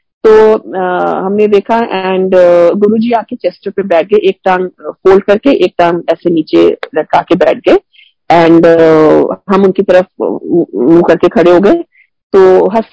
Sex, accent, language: female, native, Hindi